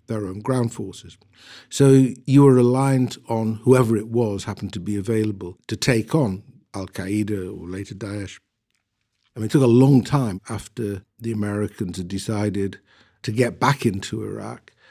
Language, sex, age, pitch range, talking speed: English, male, 60-79, 105-125 Hz, 155 wpm